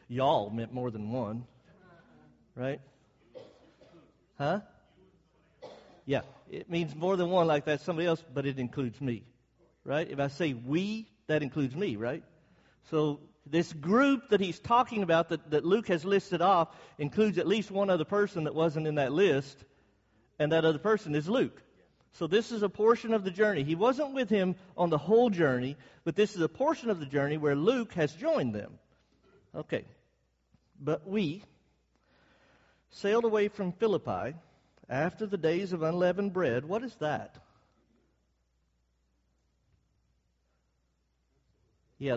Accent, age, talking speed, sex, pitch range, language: American, 50-69, 150 wpm, male, 145-210 Hz, English